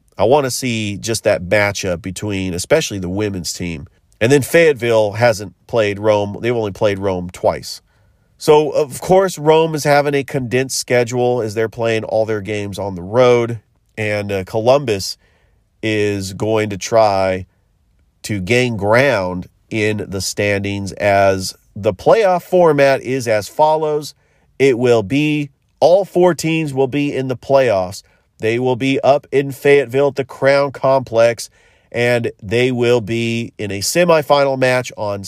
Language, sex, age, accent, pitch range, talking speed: English, male, 40-59, American, 105-140 Hz, 155 wpm